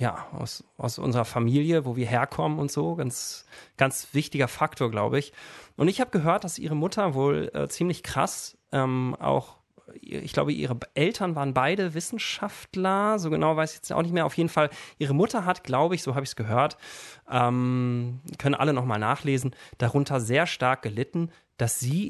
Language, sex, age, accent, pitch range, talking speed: German, male, 30-49, German, 125-160 Hz, 185 wpm